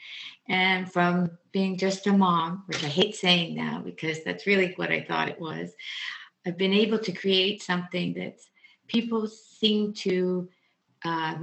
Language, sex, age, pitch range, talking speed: English, female, 60-79, 170-195 Hz, 165 wpm